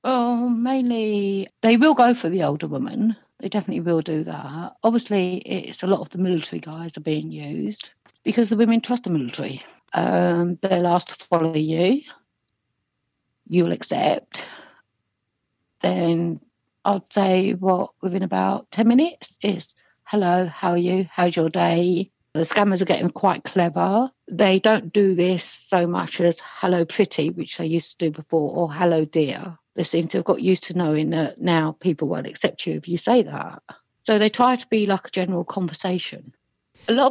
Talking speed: 175 wpm